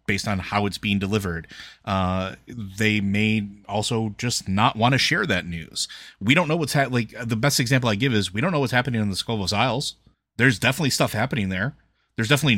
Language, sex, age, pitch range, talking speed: English, male, 30-49, 100-125 Hz, 215 wpm